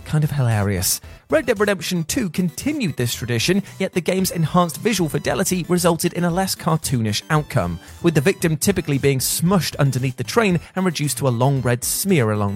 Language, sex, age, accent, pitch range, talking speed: English, male, 30-49, British, 120-185 Hz, 185 wpm